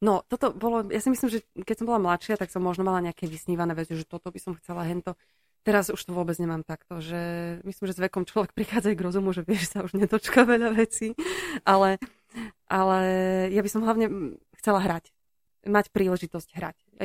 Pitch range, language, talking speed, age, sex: 175-205 Hz, Slovak, 210 wpm, 20-39, female